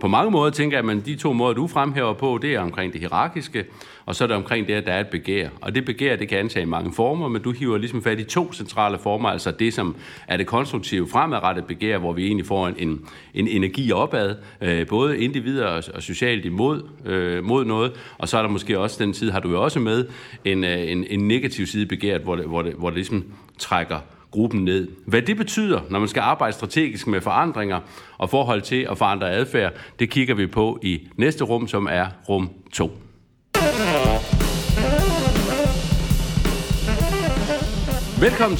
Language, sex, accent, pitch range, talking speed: Danish, male, native, 95-130 Hz, 200 wpm